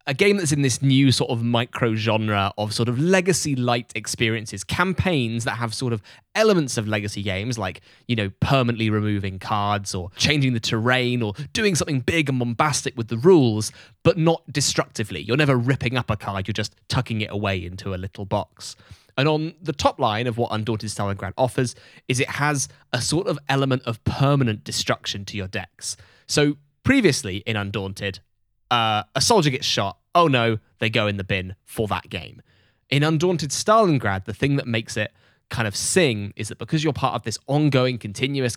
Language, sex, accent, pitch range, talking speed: English, male, British, 105-140 Hz, 195 wpm